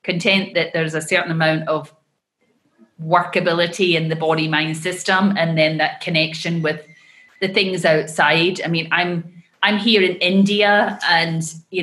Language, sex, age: English, female, 30-49